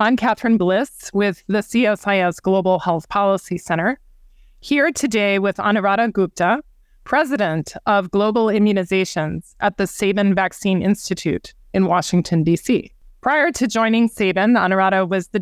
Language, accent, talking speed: English, American, 130 wpm